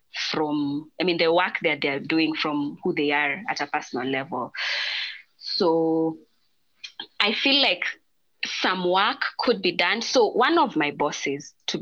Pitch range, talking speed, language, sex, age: 160-205 Hz, 165 wpm, English, female, 20-39